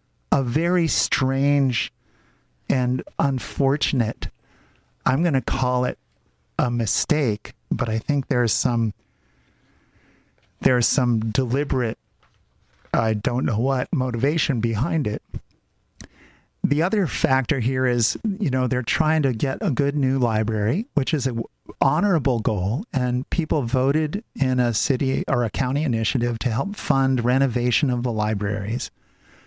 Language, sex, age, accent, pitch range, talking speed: English, male, 50-69, American, 120-145 Hz, 130 wpm